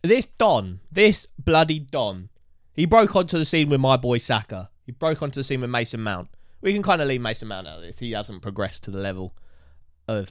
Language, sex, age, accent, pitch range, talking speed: English, male, 20-39, British, 90-145 Hz, 225 wpm